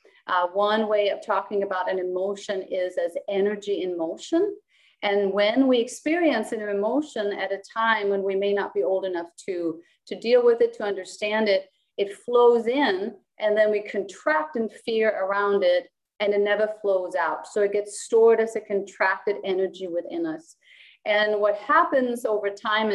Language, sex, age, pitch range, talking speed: English, female, 30-49, 195-225 Hz, 180 wpm